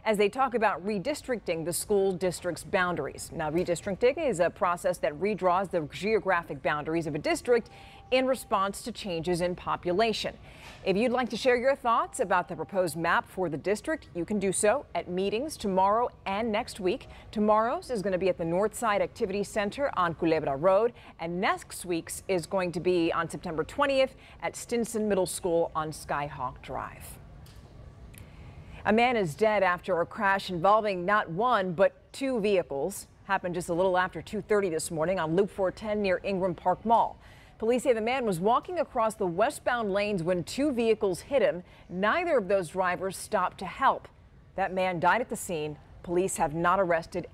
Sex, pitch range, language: female, 175-220 Hz, English